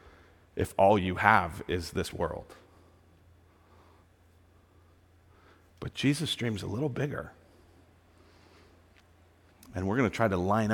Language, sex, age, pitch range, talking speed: English, male, 40-59, 85-105 Hz, 115 wpm